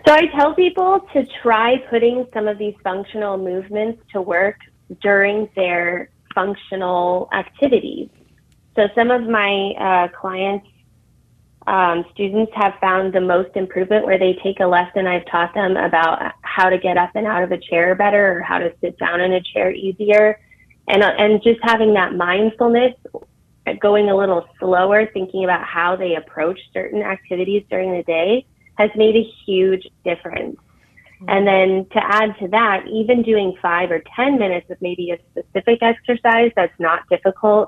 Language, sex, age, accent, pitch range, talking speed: English, female, 20-39, American, 180-215 Hz, 165 wpm